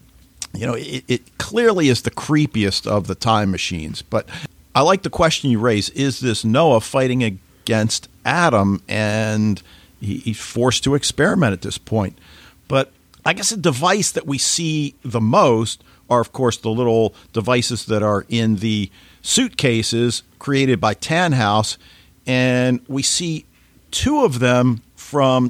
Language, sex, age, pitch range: English, male, 50-69, 105-140 Hz